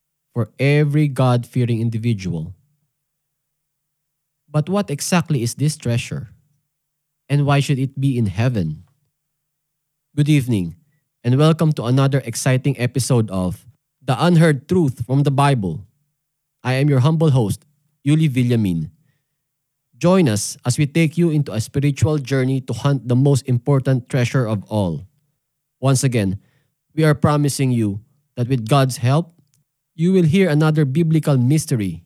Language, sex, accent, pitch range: English, male, Filipino, 125-150 Hz